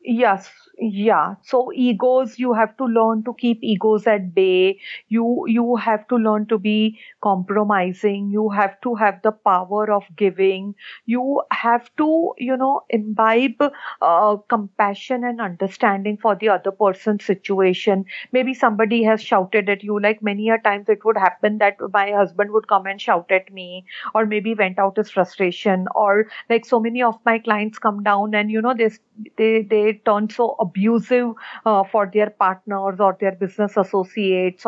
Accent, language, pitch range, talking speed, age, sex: Indian, English, 200-235 Hz, 170 wpm, 50-69, female